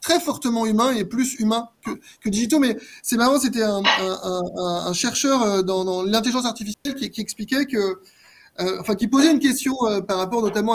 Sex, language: male, French